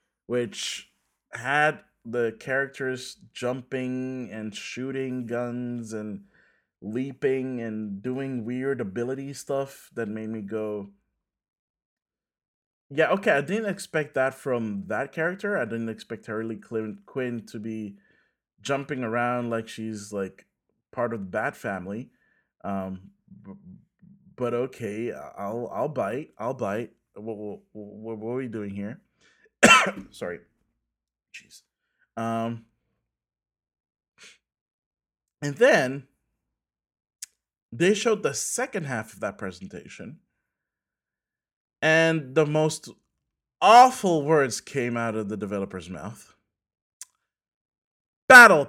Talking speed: 105 wpm